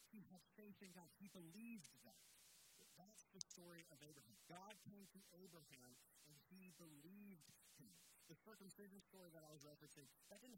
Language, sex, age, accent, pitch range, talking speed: English, male, 50-69, American, 140-185 Hz, 170 wpm